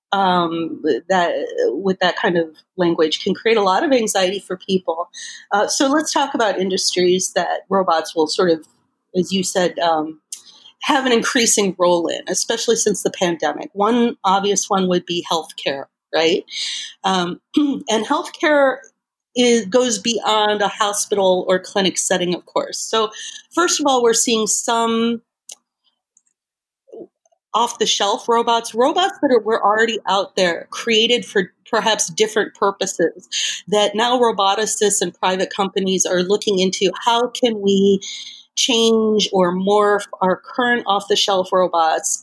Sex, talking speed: female, 140 wpm